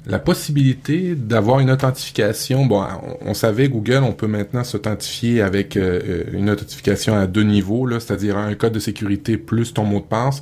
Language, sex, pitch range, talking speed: French, male, 105-140 Hz, 185 wpm